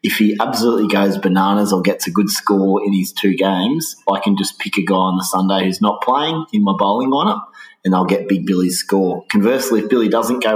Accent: Australian